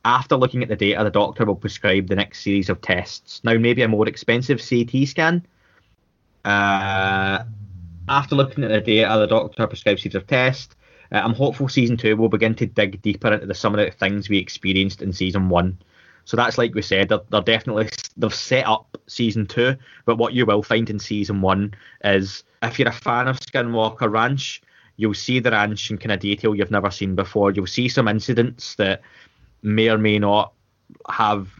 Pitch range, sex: 100-115 Hz, male